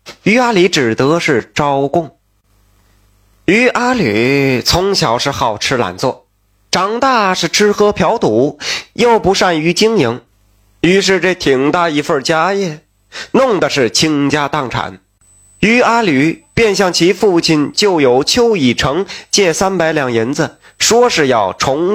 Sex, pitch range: male, 140-205 Hz